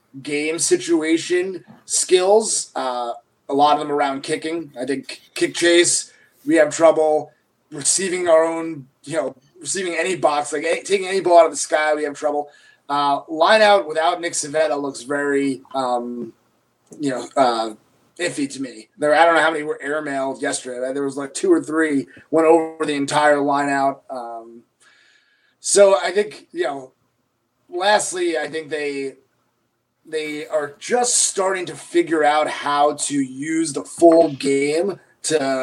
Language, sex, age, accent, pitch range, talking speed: English, male, 30-49, American, 140-170 Hz, 160 wpm